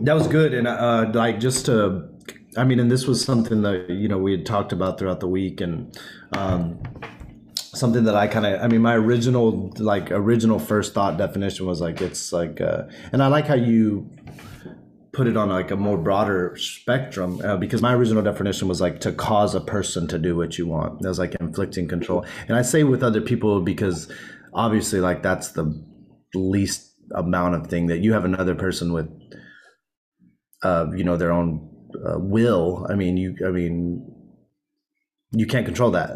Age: 30-49